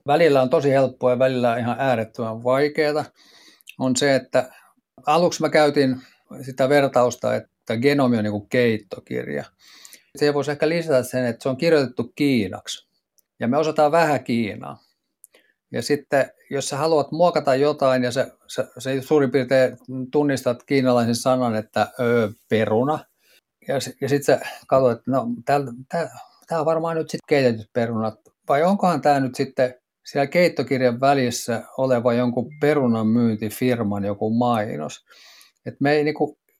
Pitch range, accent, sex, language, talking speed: 120-145 Hz, native, male, Finnish, 140 wpm